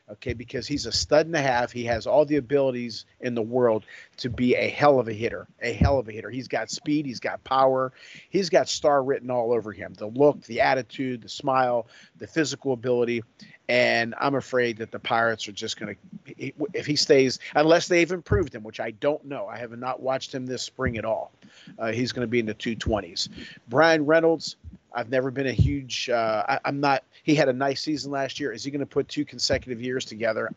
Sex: male